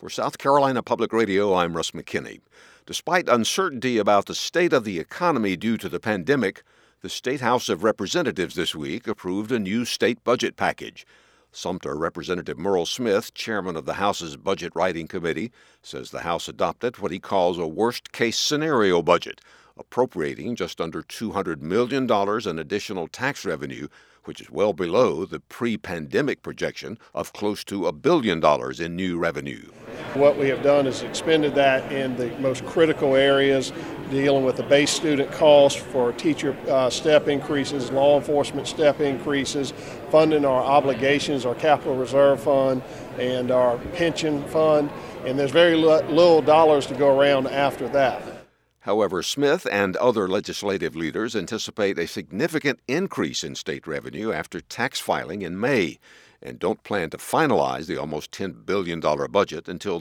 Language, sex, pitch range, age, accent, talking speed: English, male, 125-145 Hz, 60-79, American, 155 wpm